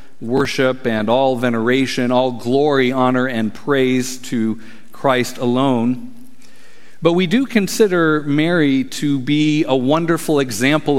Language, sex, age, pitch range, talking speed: English, male, 50-69, 120-150 Hz, 120 wpm